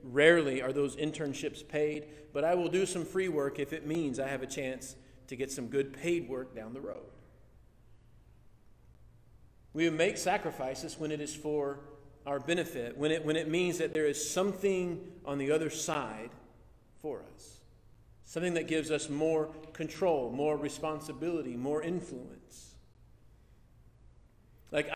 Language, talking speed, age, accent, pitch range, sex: English, 150 wpm, 40-59, American, 130-165 Hz, male